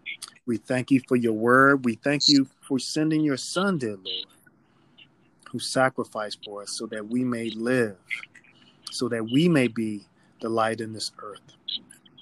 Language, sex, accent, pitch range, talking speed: English, male, American, 115-130 Hz, 165 wpm